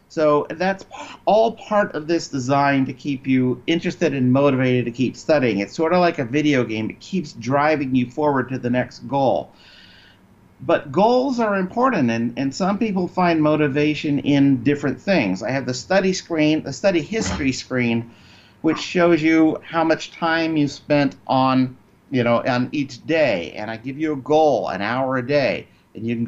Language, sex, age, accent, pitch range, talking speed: English, male, 50-69, American, 120-155 Hz, 180 wpm